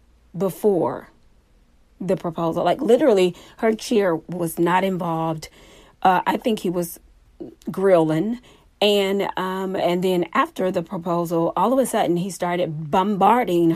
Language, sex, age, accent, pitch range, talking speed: English, female, 40-59, American, 175-230 Hz, 130 wpm